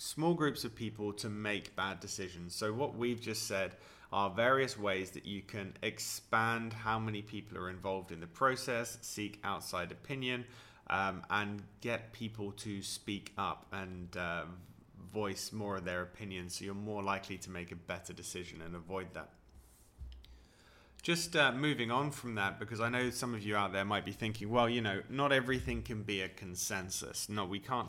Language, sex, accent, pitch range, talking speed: English, male, British, 90-115 Hz, 185 wpm